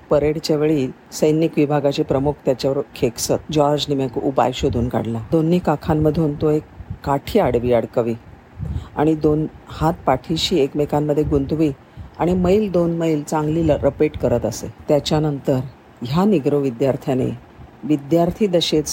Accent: native